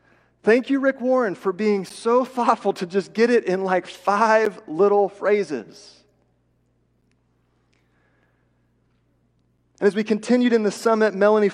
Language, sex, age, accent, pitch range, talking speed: English, male, 30-49, American, 185-230 Hz, 130 wpm